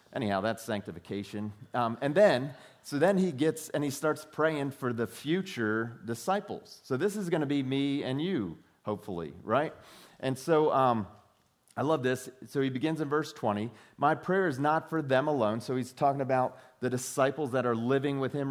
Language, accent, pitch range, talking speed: English, American, 120-155 Hz, 190 wpm